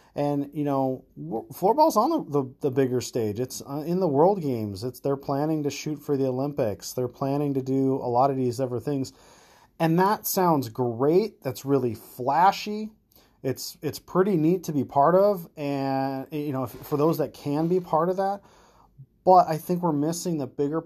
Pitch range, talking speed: 130-160 Hz, 195 wpm